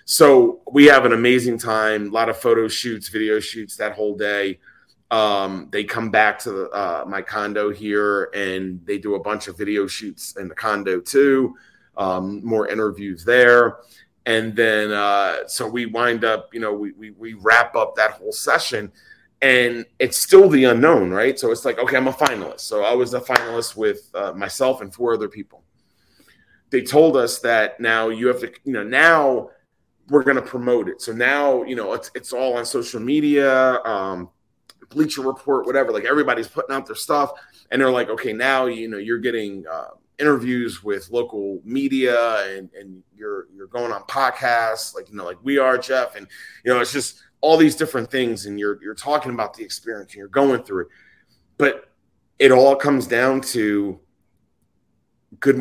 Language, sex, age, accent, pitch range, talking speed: English, male, 30-49, American, 105-135 Hz, 190 wpm